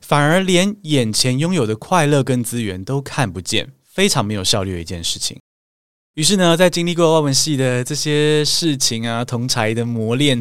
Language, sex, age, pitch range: Chinese, male, 20-39, 110-160 Hz